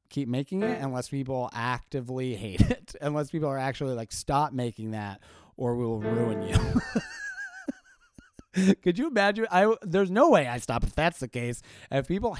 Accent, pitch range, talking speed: American, 120-160 Hz, 170 wpm